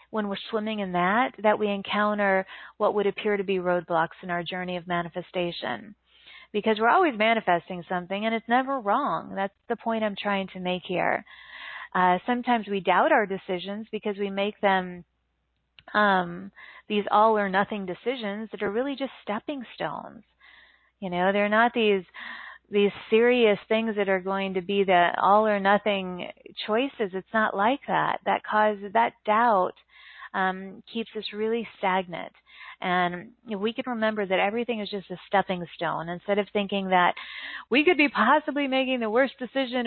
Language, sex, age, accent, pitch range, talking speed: English, female, 30-49, American, 190-235 Hz, 170 wpm